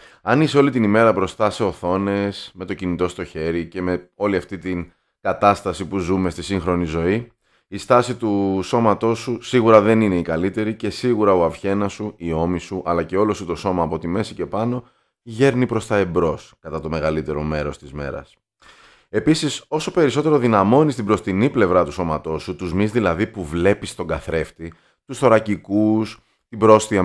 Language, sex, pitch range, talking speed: Greek, male, 85-115 Hz, 185 wpm